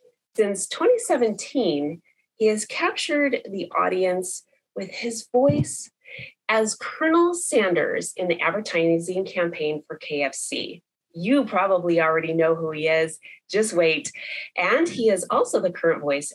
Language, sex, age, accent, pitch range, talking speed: English, female, 30-49, American, 160-225 Hz, 130 wpm